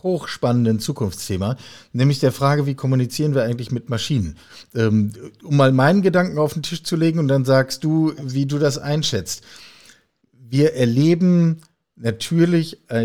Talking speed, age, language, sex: 145 wpm, 50-69, German, male